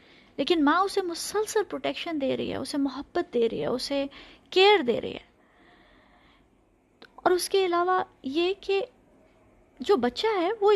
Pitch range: 270-365 Hz